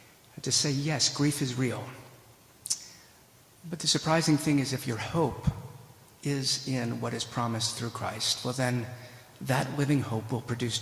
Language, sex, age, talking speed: English, male, 50-69, 155 wpm